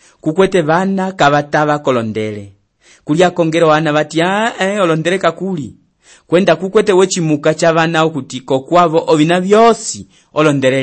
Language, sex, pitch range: English, male, 115-145 Hz